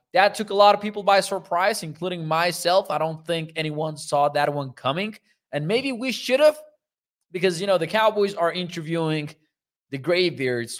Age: 20-39